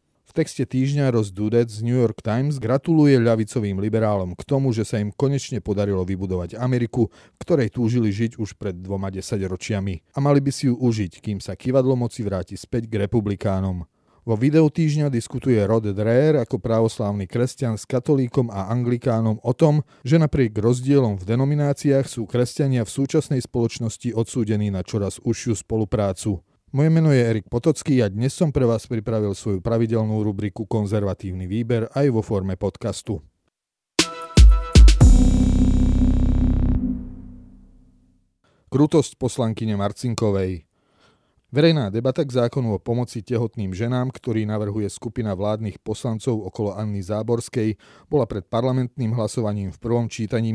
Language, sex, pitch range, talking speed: Slovak, male, 100-125 Hz, 140 wpm